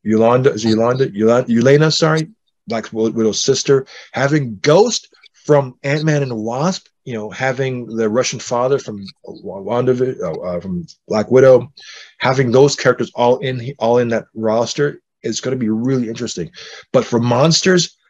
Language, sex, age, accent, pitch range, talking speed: English, male, 30-49, American, 110-145 Hz, 145 wpm